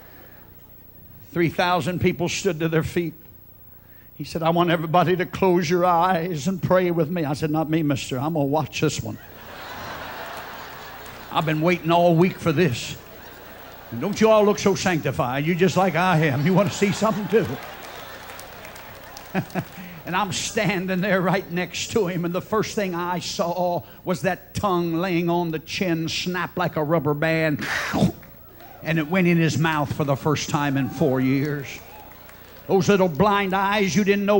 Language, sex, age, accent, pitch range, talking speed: English, male, 60-79, American, 155-195 Hz, 175 wpm